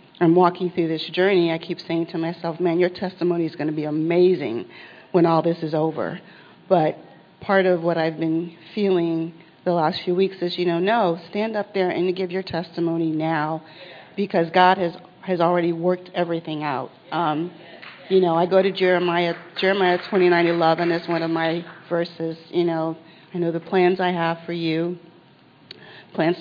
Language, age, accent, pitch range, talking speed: English, 40-59, American, 165-180 Hz, 180 wpm